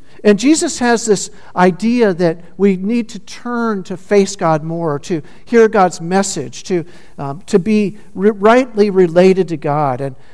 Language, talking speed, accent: English, 150 wpm, American